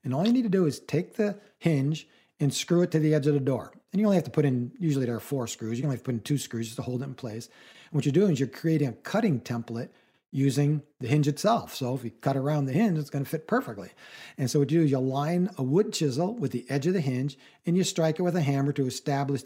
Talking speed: 300 wpm